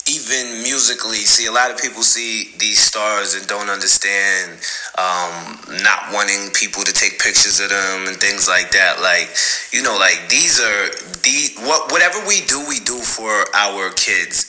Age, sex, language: 20-39, male, English